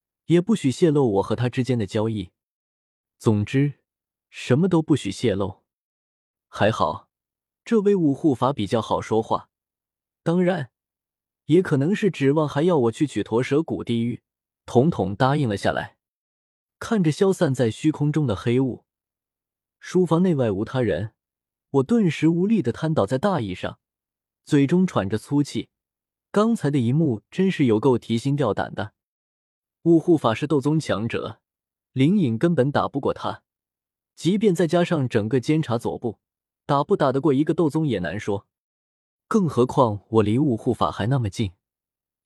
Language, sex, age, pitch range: Chinese, male, 20-39, 110-160 Hz